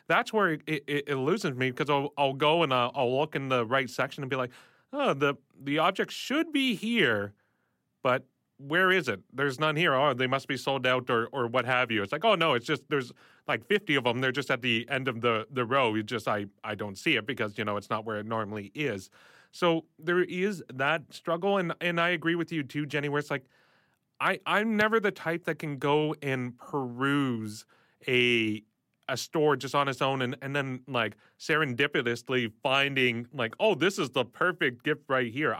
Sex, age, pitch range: male, 30-49, 125-155 Hz